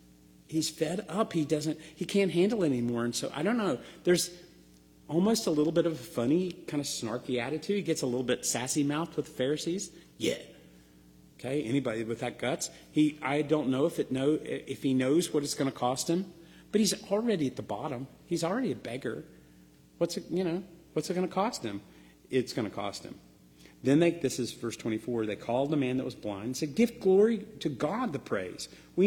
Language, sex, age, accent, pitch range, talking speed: English, male, 40-59, American, 110-165 Hz, 215 wpm